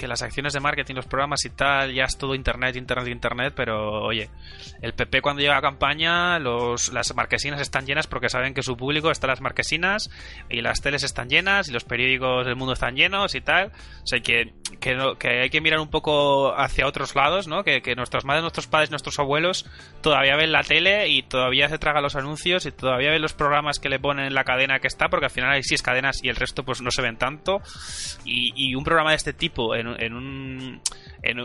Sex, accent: male, Spanish